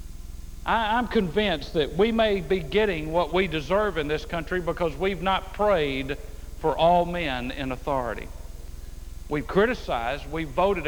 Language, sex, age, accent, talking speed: English, male, 50-69, American, 145 wpm